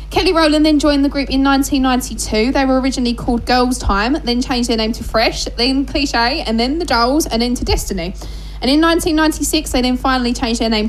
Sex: female